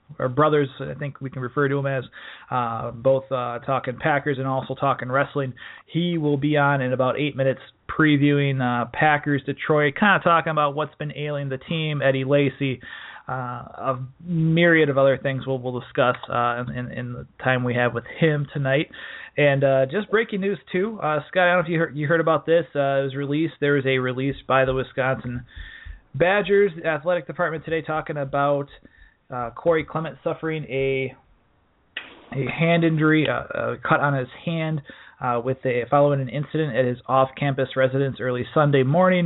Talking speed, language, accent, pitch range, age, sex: 190 wpm, English, American, 130-160 Hz, 30-49, male